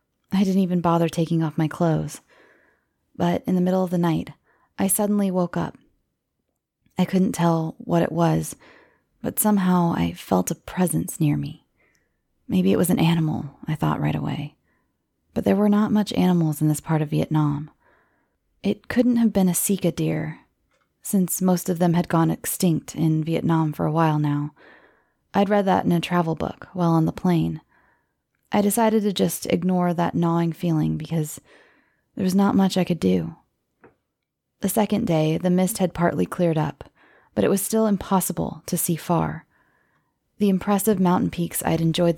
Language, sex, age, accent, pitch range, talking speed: English, female, 20-39, American, 155-190 Hz, 175 wpm